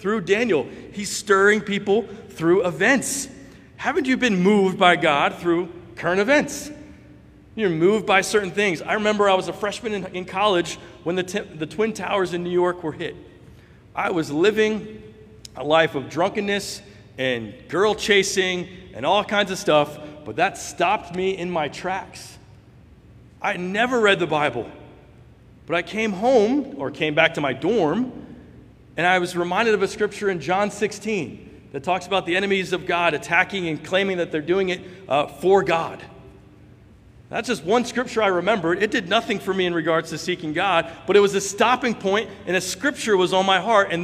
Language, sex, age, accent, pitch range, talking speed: English, male, 40-59, American, 170-220 Hz, 180 wpm